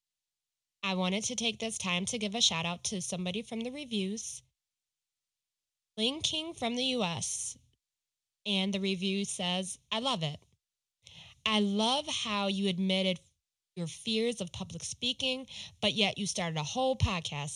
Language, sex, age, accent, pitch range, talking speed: English, female, 20-39, American, 180-235 Hz, 150 wpm